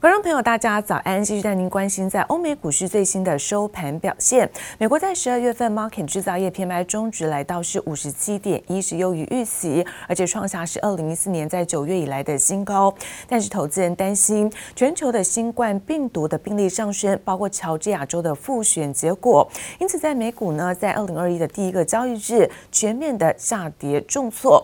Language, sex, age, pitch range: Chinese, female, 30-49, 170-220 Hz